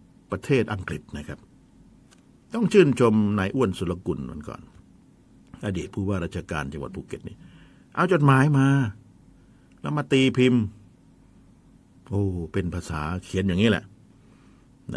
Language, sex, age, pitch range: Thai, male, 60-79, 95-140 Hz